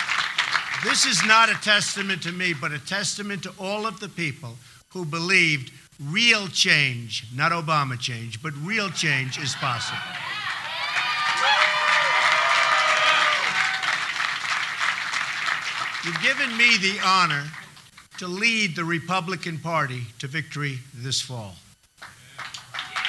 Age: 50-69